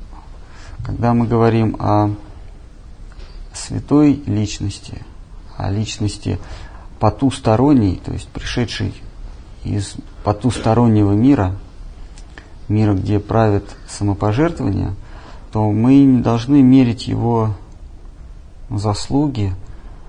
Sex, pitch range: male, 100-115 Hz